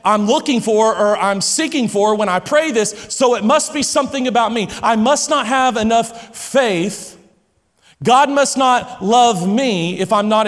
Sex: male